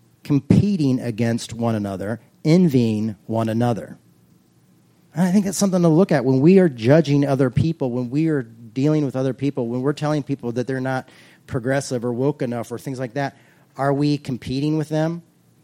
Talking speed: 185 wpm